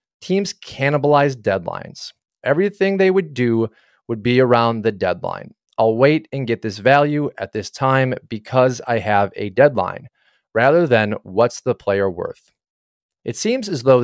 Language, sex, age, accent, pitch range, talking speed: English, male, 30-49, American, 105-140 Hz, 155 wpm